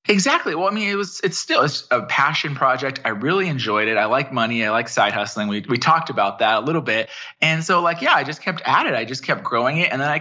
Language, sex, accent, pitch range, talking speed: English, male, American, 115-155 Hz, 280 wpm